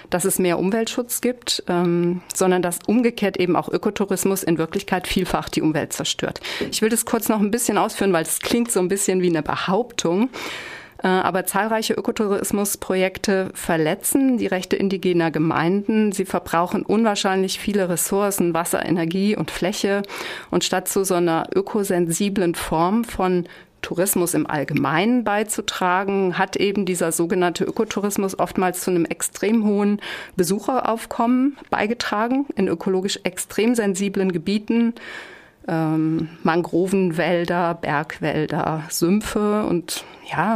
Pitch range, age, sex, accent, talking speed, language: 175-210 Hz, 40-59, female, German, 125 wpm, German